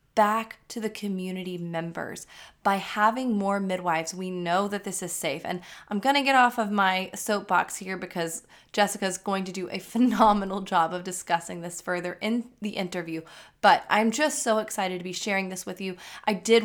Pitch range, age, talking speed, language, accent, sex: 185-230 Hz, 20-39, 195 wpm, English, American, female